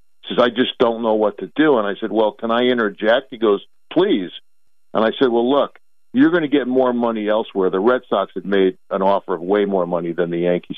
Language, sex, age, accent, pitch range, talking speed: English, male, 50-69, American, 100-135 Hz, 250 wpm